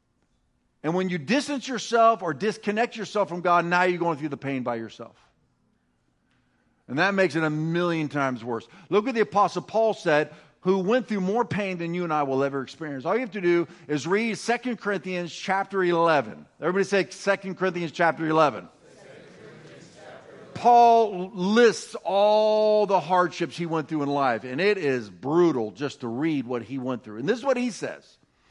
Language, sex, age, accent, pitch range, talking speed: English, male, 50-69, American, 150-215 Hz, 185 wpm